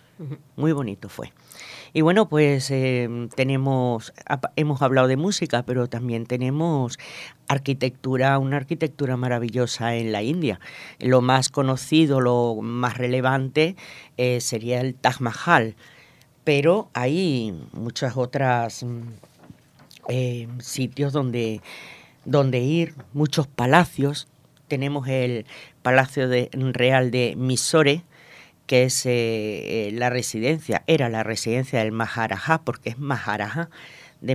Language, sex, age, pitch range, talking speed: Spanish, female, 50-69, 125-155 Hz, 110 wpm